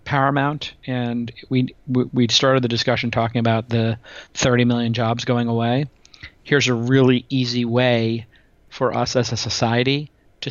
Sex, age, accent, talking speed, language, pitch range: male, 40-59, American, 155 wpm, English, 115-135 Hz